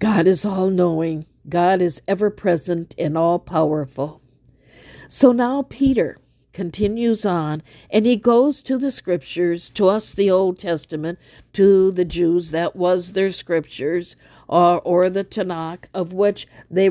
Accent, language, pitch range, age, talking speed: American, English, 175-220 Hz, 50-69, 135 wpm